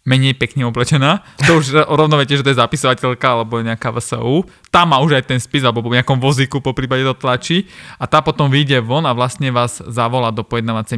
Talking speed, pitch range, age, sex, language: 210 wpm, 120-150 Hz, 20-39, male, Slovak